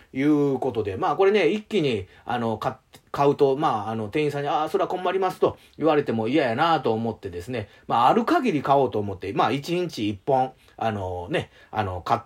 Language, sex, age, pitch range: Japanese, male, 30-49, 110-155 Hz